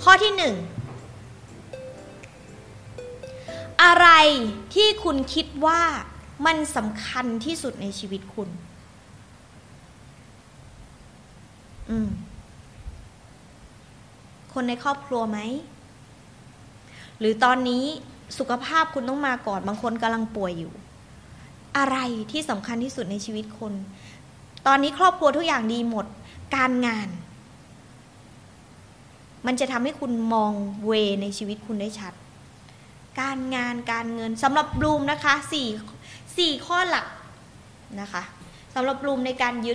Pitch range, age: 200-275 Hz, 20-39